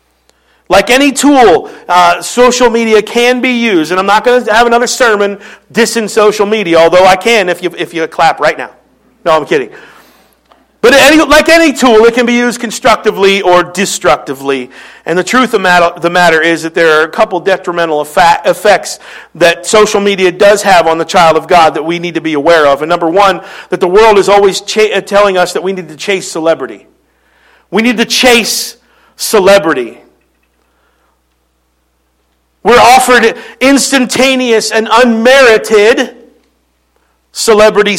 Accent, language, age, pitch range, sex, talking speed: American, English, 50-69, 175-245 Hz, male, 165 wpm